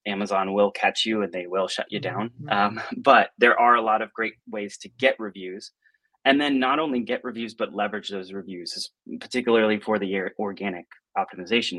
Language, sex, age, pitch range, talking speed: English, male, 30-49, 100-115 Hz, 190 wpm